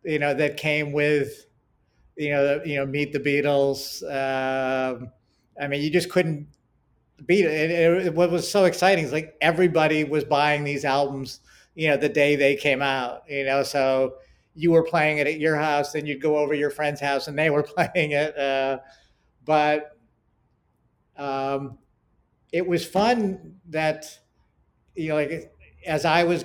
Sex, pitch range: male, 140-160 Hz